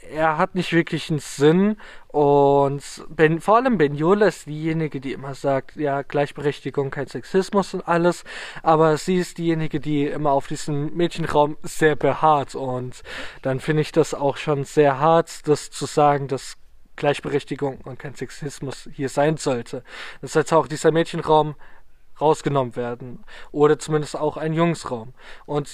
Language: German